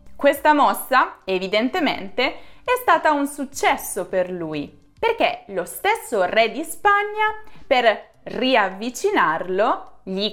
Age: 20-39